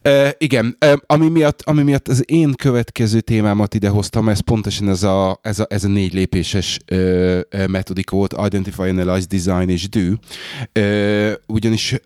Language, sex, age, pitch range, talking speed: Hungarian, male, 30-49, 95-115 Hz, 160 wpm